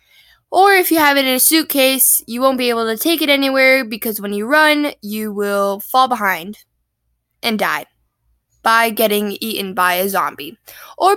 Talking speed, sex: 175 wpm, female